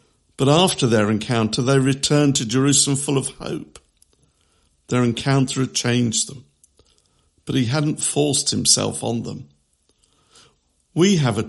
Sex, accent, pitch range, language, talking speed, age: male, British, 110-145 Hz, English, 135 wpm, 50-69